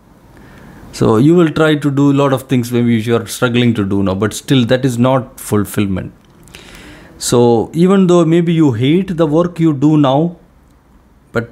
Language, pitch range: English, 115-155 Hz